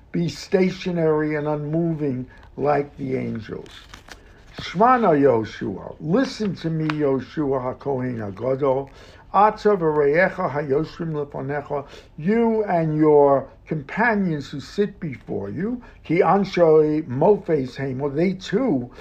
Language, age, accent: English, 60-79, American